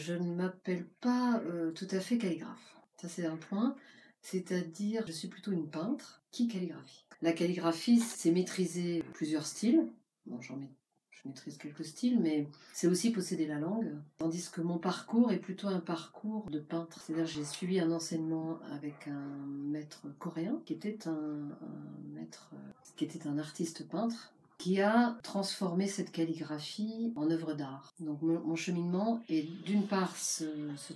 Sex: female